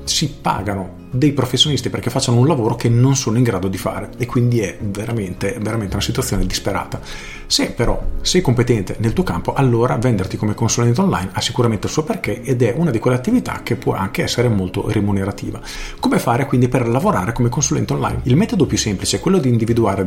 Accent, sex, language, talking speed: native, male, Italian, 205 wpm